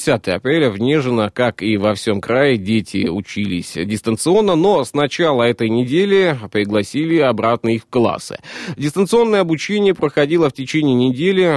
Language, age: Russian, 20-39